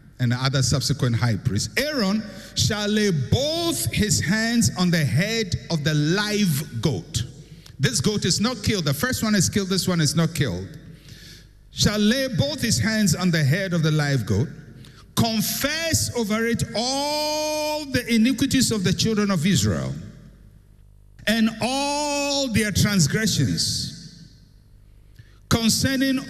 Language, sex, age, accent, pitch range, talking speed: English, male, 60-79, Nigerian, 135-220 Hz, 140 wpm